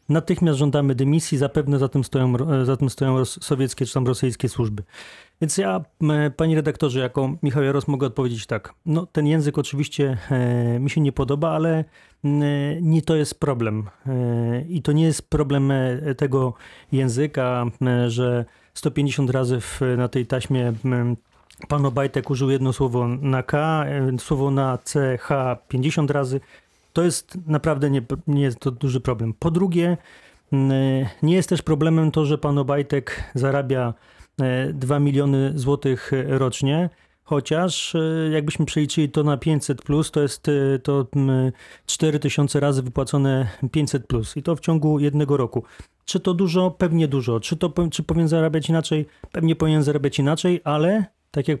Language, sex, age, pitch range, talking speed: Polish, male, 30-49, 130-155 Hz, 140 wpm